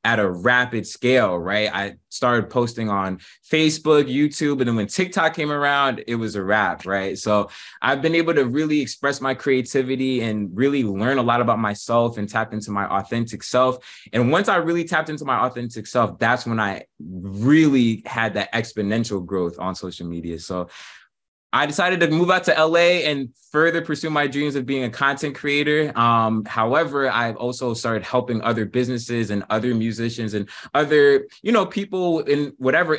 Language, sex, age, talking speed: English, male, 20-39, 180 wpm